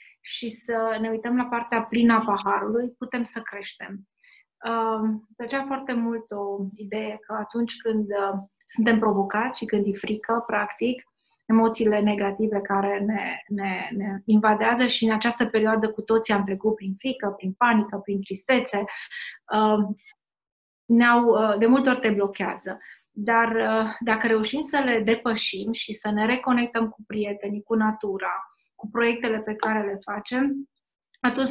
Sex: female